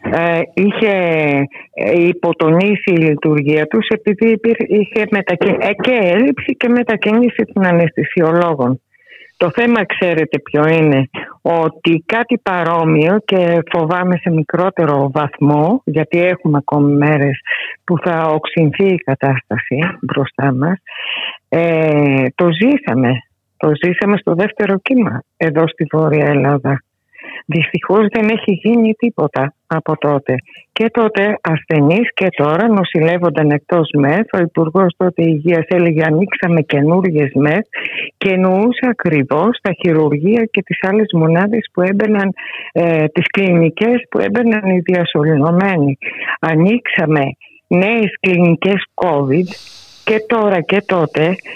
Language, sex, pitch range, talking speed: Greek, female, 155-205 Hz, 120 wpm